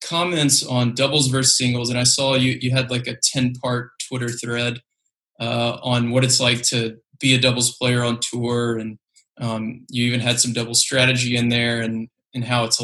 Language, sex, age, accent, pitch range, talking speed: English, male, 20-39, American, 120-130 Hz, 200 wpm